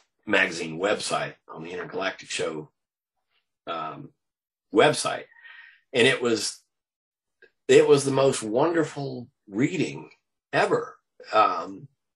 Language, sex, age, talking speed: English, male, 50-69, 95 wpm